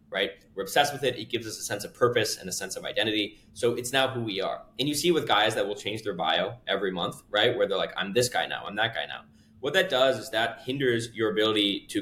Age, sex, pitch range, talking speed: 20-39, male, 110-170 Hz, 280 wpm